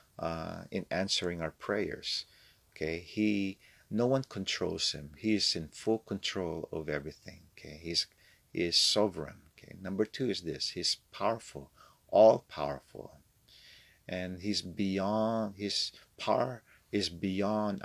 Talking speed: 125 wpm